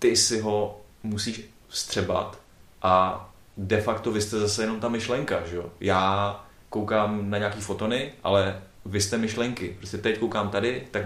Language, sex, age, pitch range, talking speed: Czech, male, 30-49, 95-110 Hz, 155 wpm